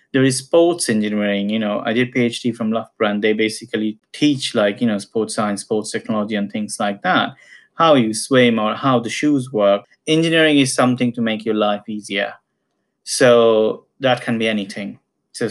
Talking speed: 185 wpm